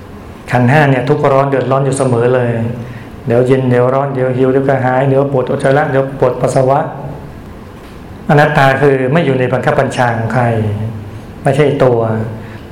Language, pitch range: Thai, 115-140 Hz